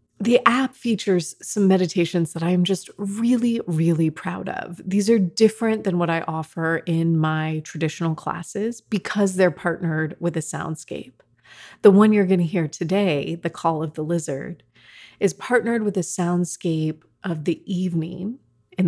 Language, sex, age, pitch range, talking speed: English, female, 30-49, 165-195 Hz, 160 wpm